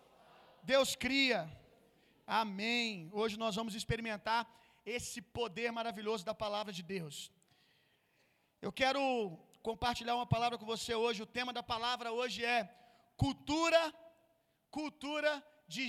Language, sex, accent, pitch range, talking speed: Gujarati, male, Brazilian, 215-265 Hz, 115 wpm